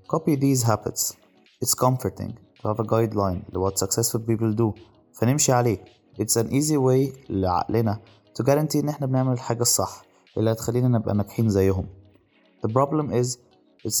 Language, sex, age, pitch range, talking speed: Arabic, male, 20-39, 105-130 Hz, 160 wpm